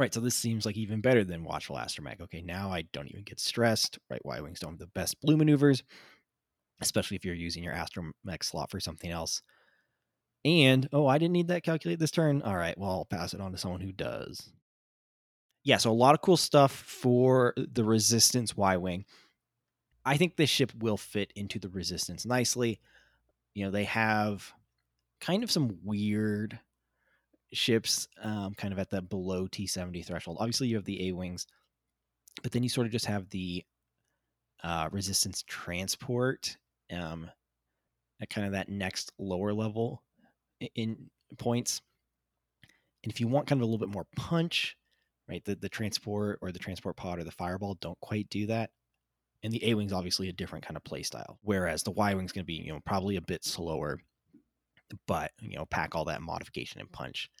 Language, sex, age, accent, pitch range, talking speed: English, male, 20-39, American, 90-120 Hz, 185 wpm